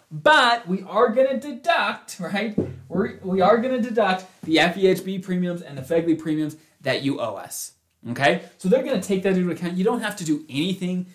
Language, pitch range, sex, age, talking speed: English, 155-200 Hz, male, 20-39, 205 wpm